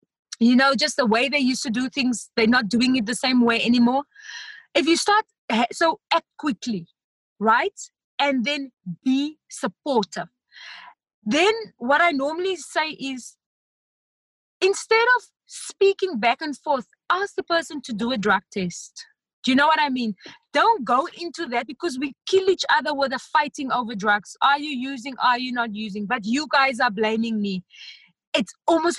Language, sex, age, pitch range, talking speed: English, female, 20-39, 240-330 Hz, 175 wpm